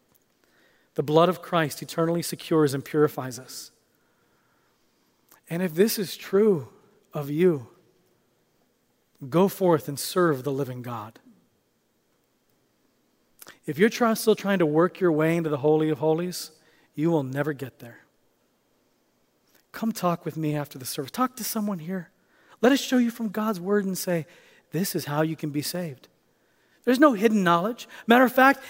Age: 40-59